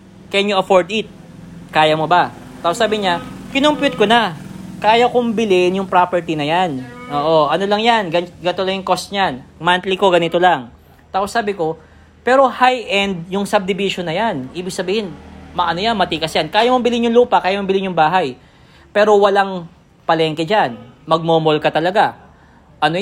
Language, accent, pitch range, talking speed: English, Filipino, 165-200 Hz, 170 wpm